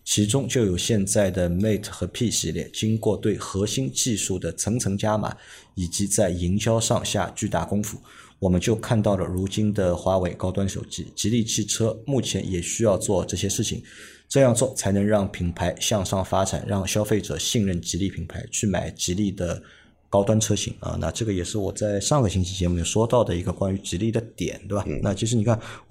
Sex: male